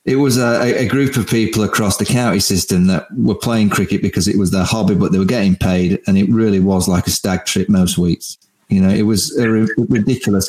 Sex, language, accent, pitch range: male, English, British, 100-115 Hz